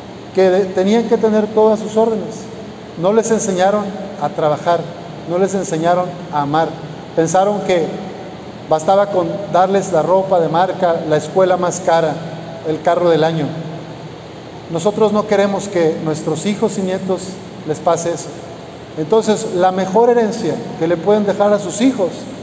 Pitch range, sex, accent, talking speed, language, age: 170-205 Hz, male, Mexican, 150 wpm, Spanish, 40-59